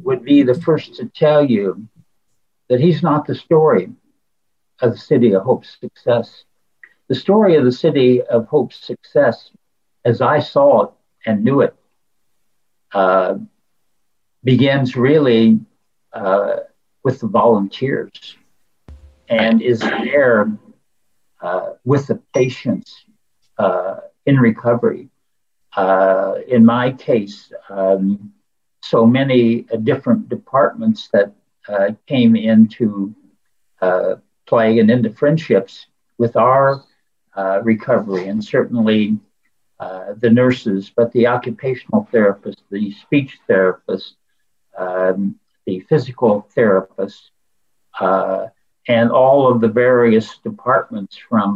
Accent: American